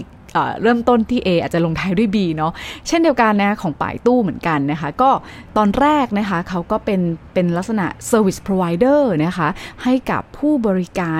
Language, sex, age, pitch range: Thai, female, 20-39, 165-220 Hz